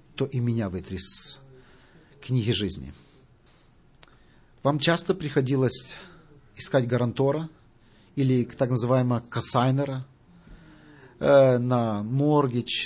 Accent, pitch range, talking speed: native, 115-145 Hz, 85 wpm